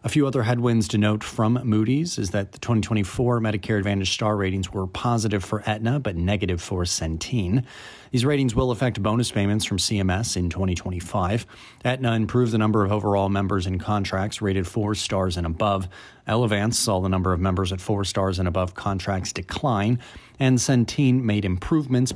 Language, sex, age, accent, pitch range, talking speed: English, male, 30-49, American, 95-115 Hz, 175 wpm